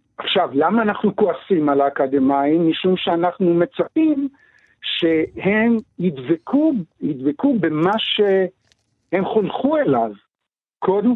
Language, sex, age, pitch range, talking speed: Hebrew, male, 60-79, 160-230 Hz, 90 wpm